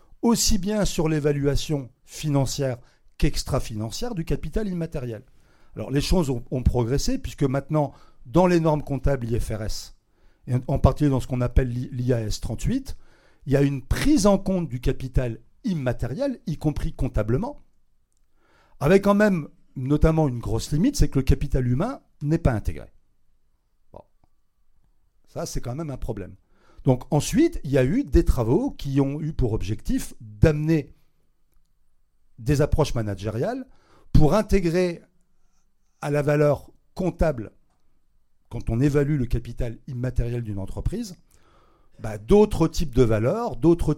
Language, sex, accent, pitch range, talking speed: French, male, French, 120-160 Hz, 140 wpm